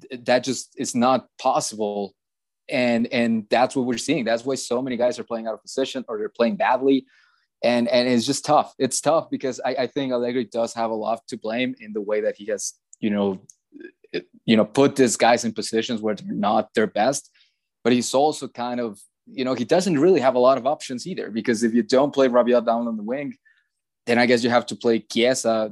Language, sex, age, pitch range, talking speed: English, male, 20-39, 115-130 Hz, 225 wpm